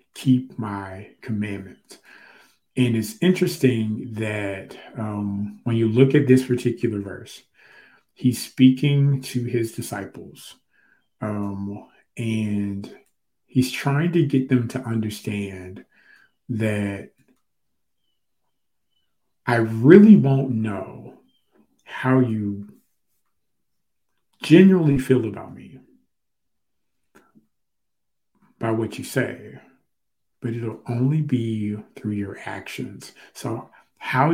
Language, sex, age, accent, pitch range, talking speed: English, male, 40-59, American, 105-130 Hz, 95 wpm